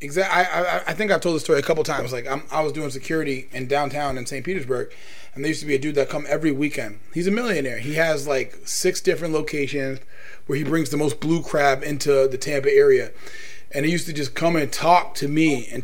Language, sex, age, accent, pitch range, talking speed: English, male, 20-39, American, 145-200 Hz, 250 wpm